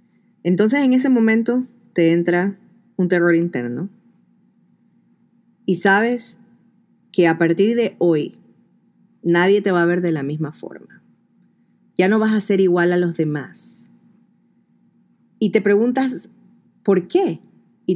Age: 30-49